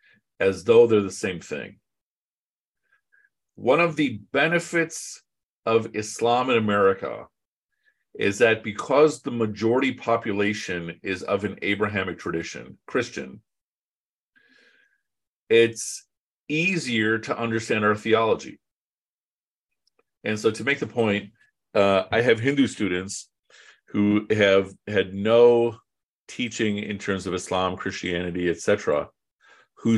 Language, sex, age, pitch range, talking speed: English, male, 50-69, 100-150 Hz, 110 wpm